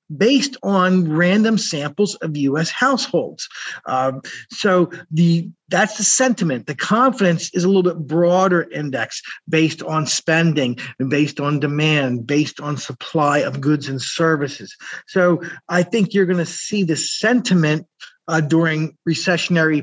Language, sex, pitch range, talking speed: English, male, 150-185 Hz, 140 wpm